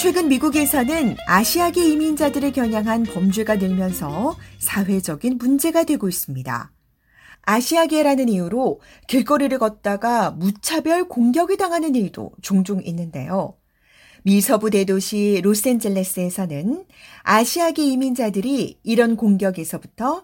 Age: 40-59